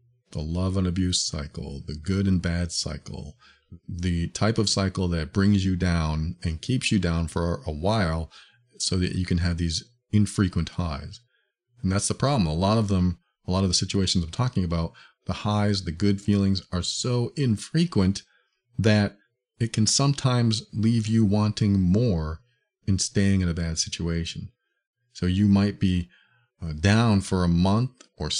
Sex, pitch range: male, 90-120 Hz